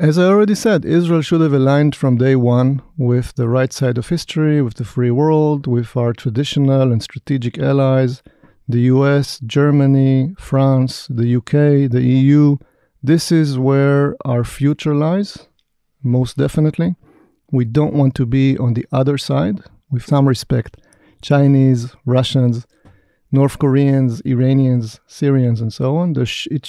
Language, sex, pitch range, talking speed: English, male, 125-145 Hz, 145 wpm